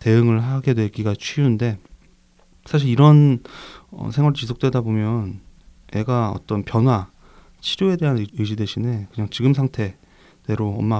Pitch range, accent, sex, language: 105-130 Hz, native, male, Korean